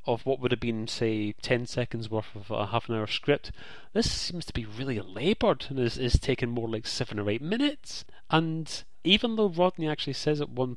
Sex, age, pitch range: male, 30-49, 110-160 Hz